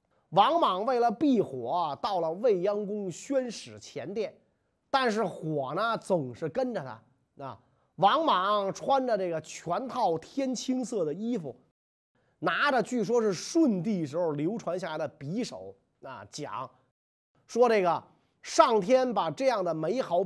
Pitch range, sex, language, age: 165-245 Hz, male, Chinese, 30-49